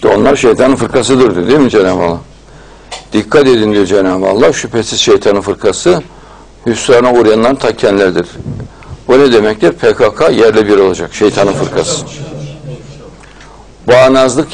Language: Turkish